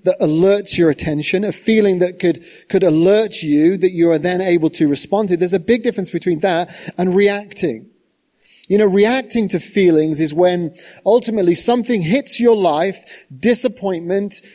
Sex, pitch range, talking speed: male, 175-220 Hz, 165 wpm